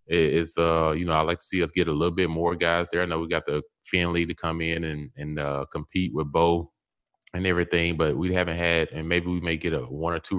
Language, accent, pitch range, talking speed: English, American, 80-100 Hz, 265 wpm